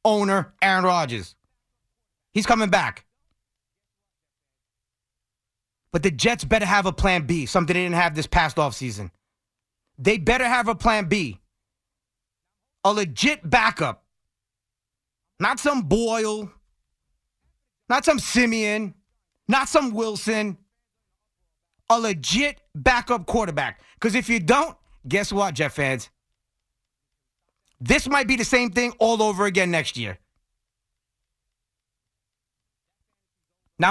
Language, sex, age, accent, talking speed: English, male, 30-49, American, 110 wpm